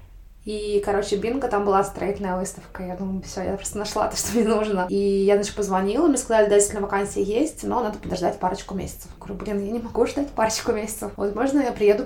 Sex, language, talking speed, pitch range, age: female, Russian, 220 wpm, 190-215 Hz, 20-39